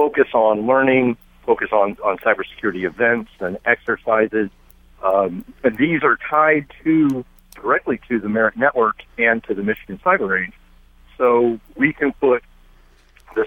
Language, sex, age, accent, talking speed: English, male, 50-69, American, 145 wpm